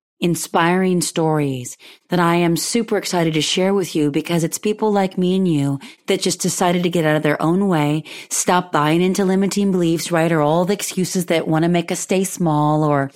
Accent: American